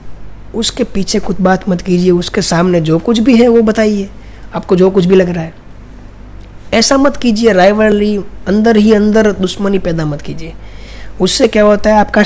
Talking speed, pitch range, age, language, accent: 180 wpm, 165-215 Hz, 20-39, Hindi, native